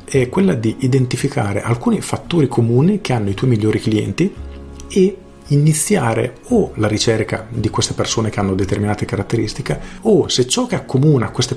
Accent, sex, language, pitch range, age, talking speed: native, male, Italian, 105-135 Hz, 40-59, 160 wpm